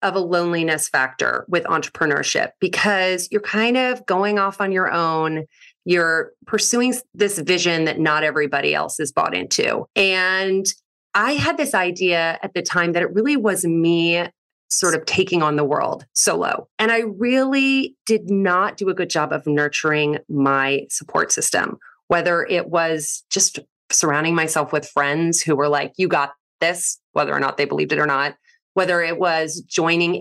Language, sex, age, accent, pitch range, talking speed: English, female, 30-49, American, 165-240 Hz, 170 wpm